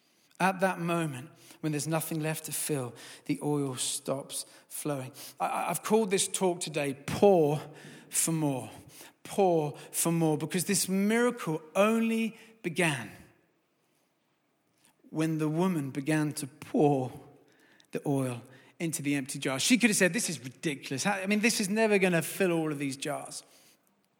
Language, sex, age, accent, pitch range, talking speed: English, male, 40-59, British, 145-200 Hz, 150 wpm